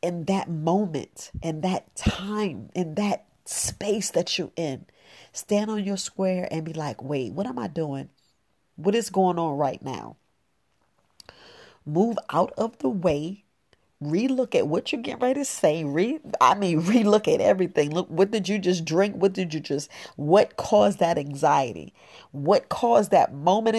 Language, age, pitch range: English, 40-59, 165-220 Hz